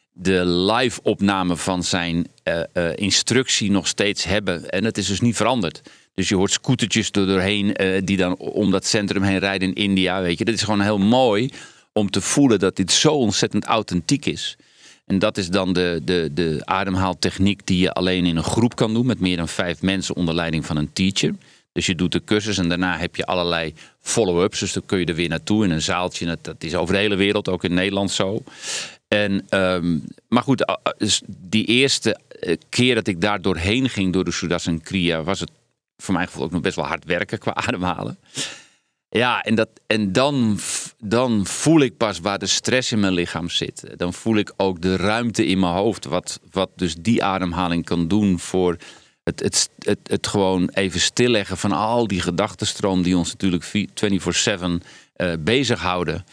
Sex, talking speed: male, 195 wpm